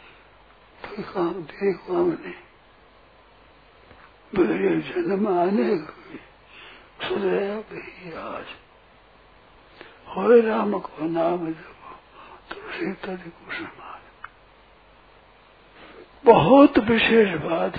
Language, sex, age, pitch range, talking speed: Hindi, male, 60-79, 185-235 Hz, 65 wpm